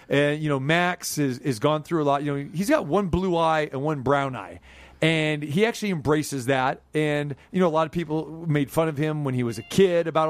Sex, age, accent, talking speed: male, 40-59, American, 245 wpm